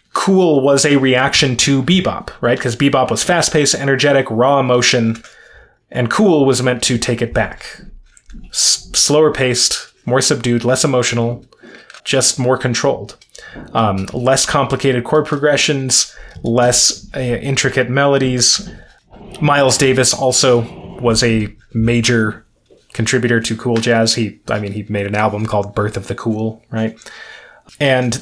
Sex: male